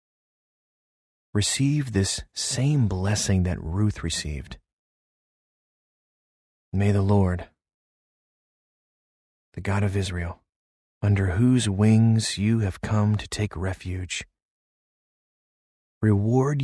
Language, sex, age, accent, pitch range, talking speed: English, male, 40-59, American, 90-110 Hz, 85 wpm